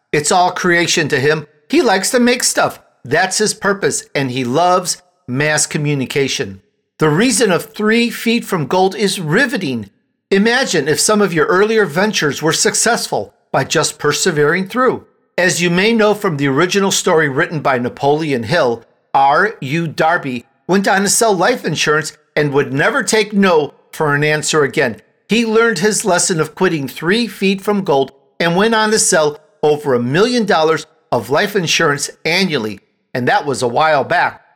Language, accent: English, American